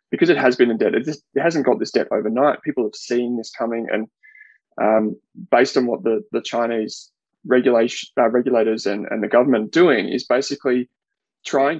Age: 20-39